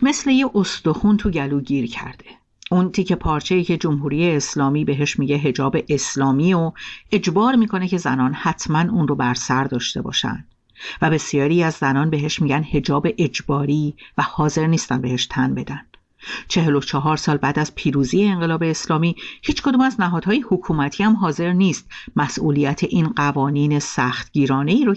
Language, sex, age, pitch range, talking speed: Persian, female, 50-69, 135-180 Hz, 160 wpm